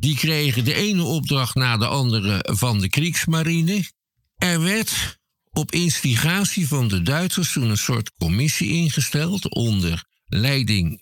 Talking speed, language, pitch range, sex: 135 wpm, Dutch, 110-150 Hz, male